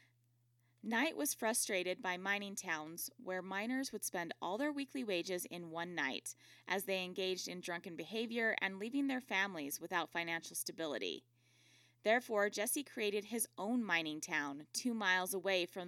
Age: 20-39